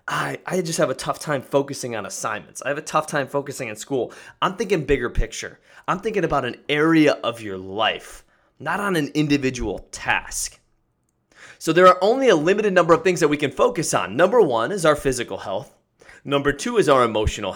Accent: American